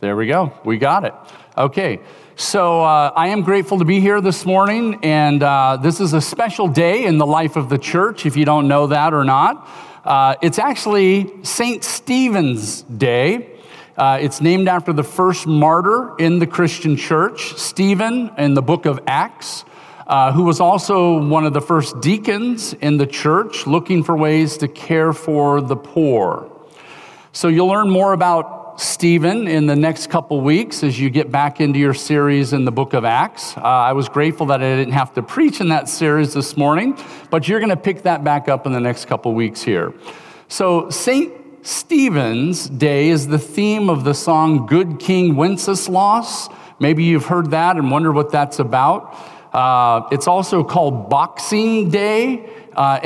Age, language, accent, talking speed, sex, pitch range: 50-69, English, American, 180 wpm, male, 145-190 Hz